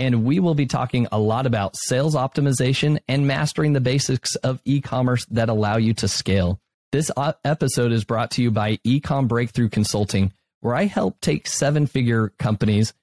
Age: 30-49